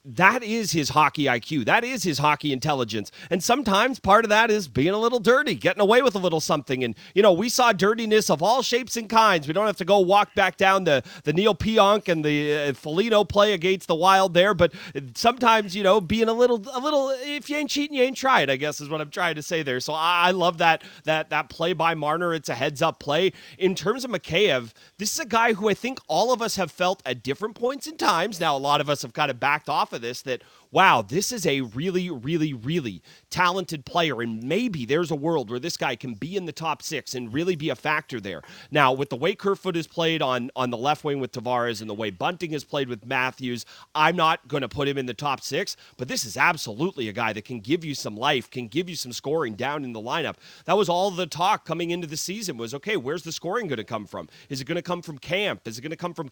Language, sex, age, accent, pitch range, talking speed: English, male, 30-49, American, 145-195 Hz, 255 wpm